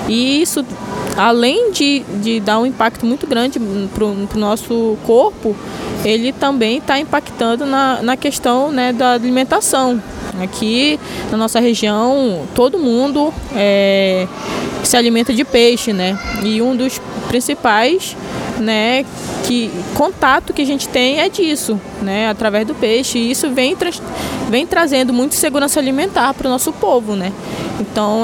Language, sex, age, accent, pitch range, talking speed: Portuguese, female, 20-39, Brazilian, 220-270 Hz, 140 wpm